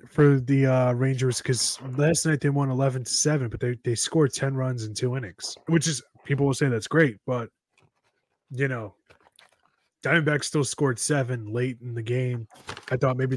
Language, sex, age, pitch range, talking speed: English, male, 20-39, 125-165 Hz, 180 wpm